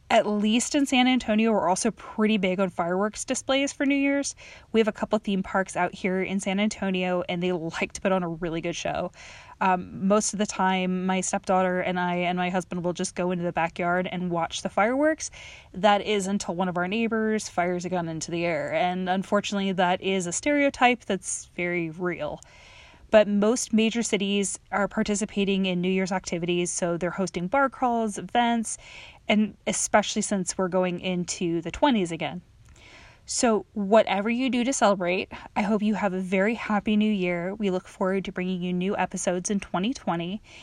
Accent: American